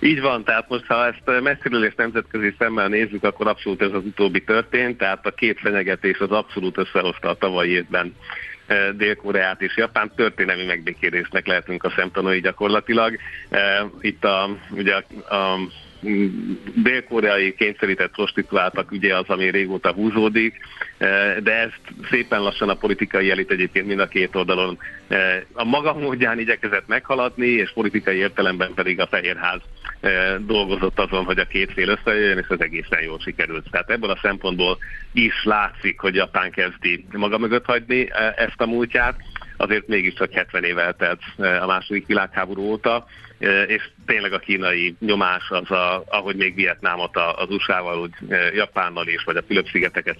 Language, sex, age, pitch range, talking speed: Hungarian, male, 50-69, 95-110 Hz, 150 wpm